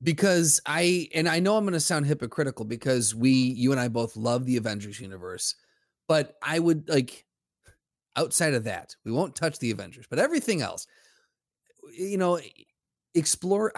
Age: 30-49